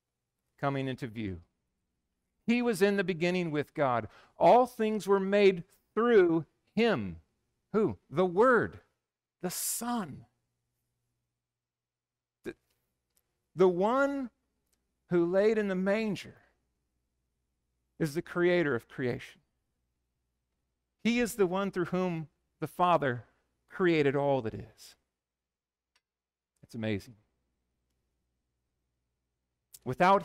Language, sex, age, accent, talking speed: English, male, 50-69, American, 95 wpm